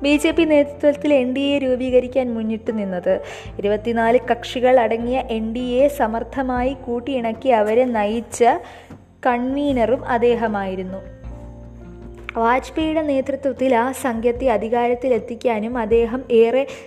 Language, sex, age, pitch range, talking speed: Malayalam, female, 20-39, 225-255 Hz, 105 wpm